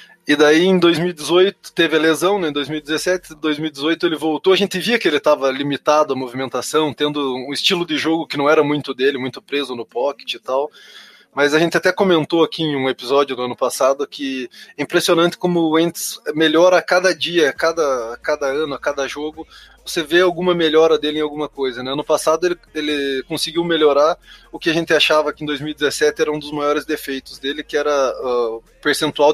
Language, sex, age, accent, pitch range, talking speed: Portuguese, male, 20-39, Brazilian, 140-170 Hz, 210 wpm